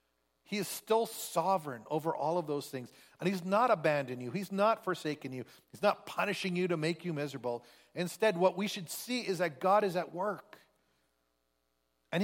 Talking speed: 185 wpm